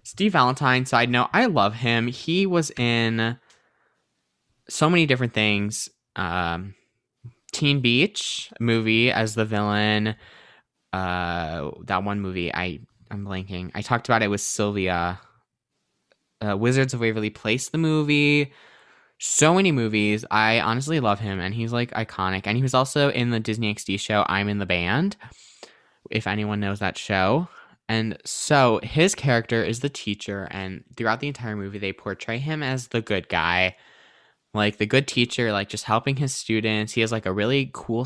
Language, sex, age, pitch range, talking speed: English, male, 10-29, 100-120 Hz, 160 wpm